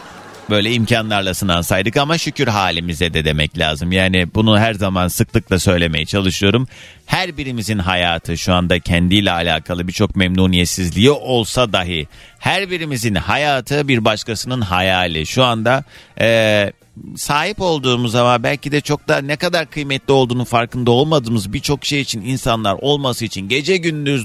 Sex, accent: male, native